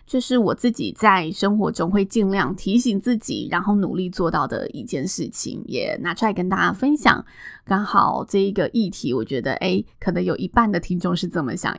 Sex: female